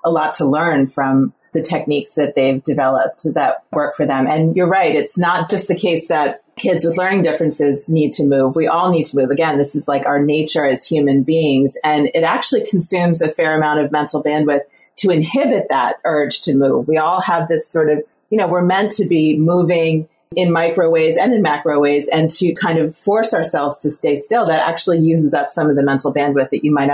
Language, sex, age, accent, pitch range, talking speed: English, female, 30-49, American, 145-175 Hz, 225 wpm